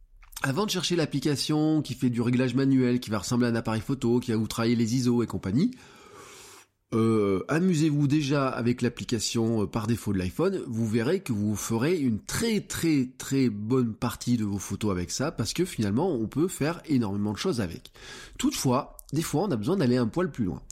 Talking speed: 205 wpm